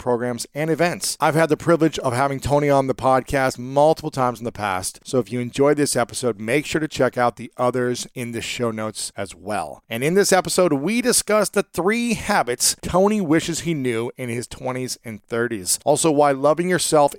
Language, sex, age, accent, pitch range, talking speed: English, male, 40-59, American, 125-160 Hz, 205 wpm